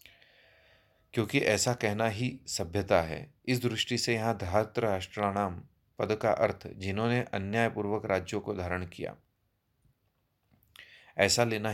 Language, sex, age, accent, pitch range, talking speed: Hindi, male, 30-49, native, 100-120 Hz, 120 wpm